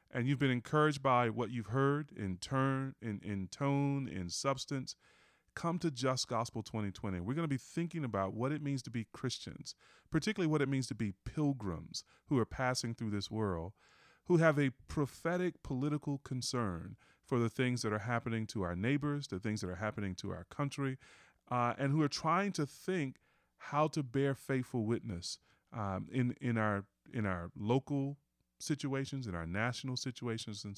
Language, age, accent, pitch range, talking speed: English, 30-49, American, 110-140 Hz, 180 wpm